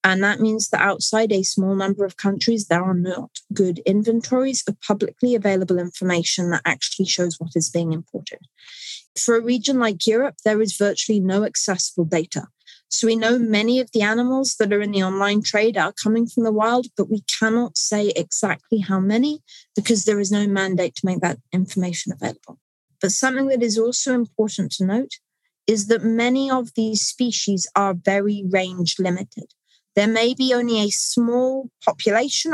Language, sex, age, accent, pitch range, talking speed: English, female, 30-49, British, 195-245 Hz, 180 wpm